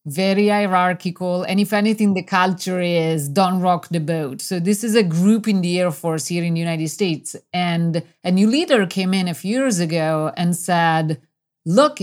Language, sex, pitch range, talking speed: English, female, 165-205 Hz, 195 wpm